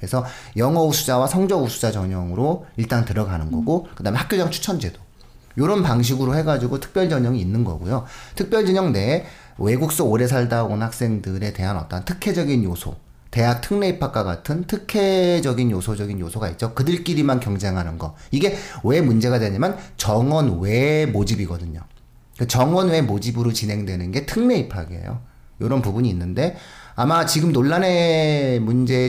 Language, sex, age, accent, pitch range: Korean, male, 40-59, native, 100-155 Hz